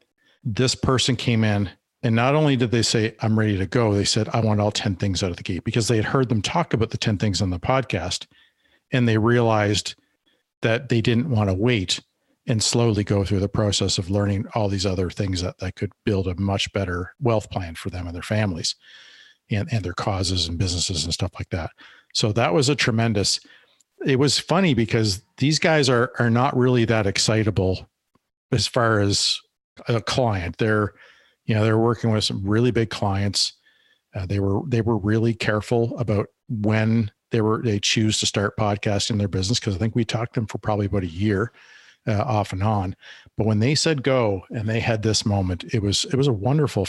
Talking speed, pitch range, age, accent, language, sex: 210 wpm, 100-120 Hz, 50-69, American, English, male